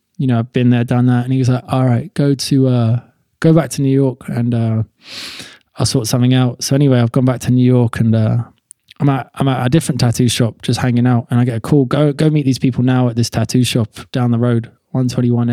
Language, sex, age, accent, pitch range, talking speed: English, male, 20-39, British, 120-145 Hz, 260 wpm